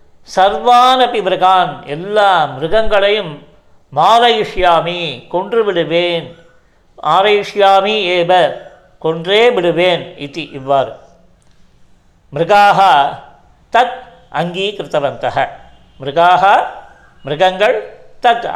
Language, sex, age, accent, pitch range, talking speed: Tamil, male, 50-69, native, 175-230 Hz, 50 wpm